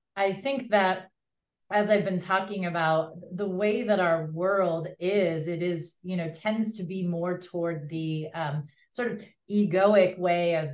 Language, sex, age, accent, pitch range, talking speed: English, female, 30-49, American, 170-205 Hz, 170 wpm